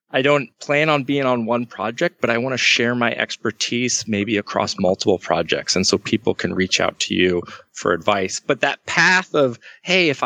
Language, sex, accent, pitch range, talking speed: English, male, American, 110-135 Hz, 205 wpm